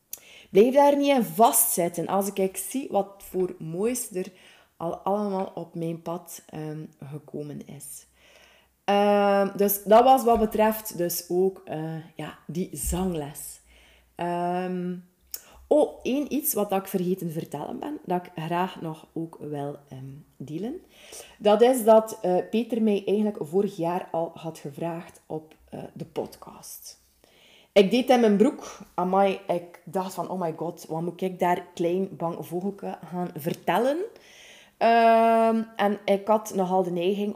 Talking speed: 145 wpm